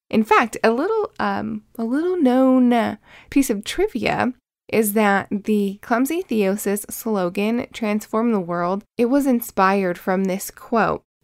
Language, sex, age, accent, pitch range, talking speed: English, female, 10-29, American, 195-230 Hz, 140 wpm